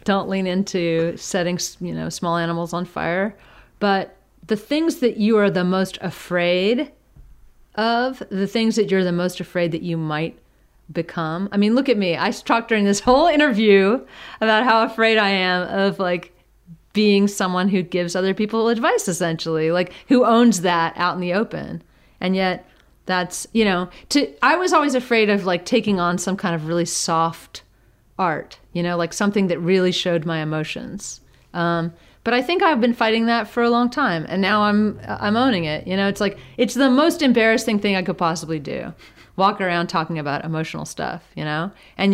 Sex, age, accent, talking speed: female, 40-59, American, 190 wpm